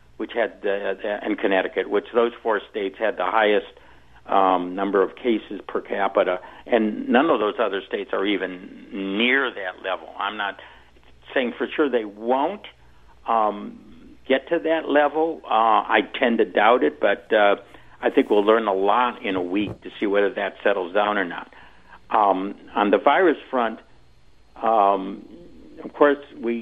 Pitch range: 100-125 Hz